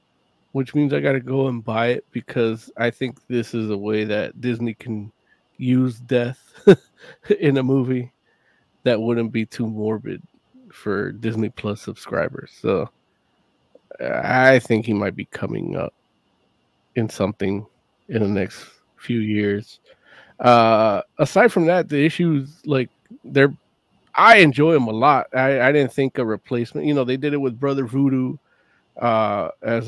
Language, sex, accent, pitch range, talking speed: English, male, American, 110-135 Hz, 155 wpm